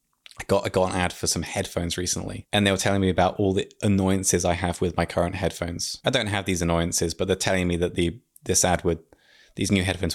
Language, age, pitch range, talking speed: English, 20-39, 90-135 Hz, 250 wpm